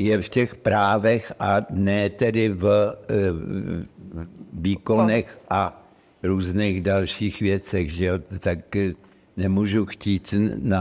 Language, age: Czech, 60-79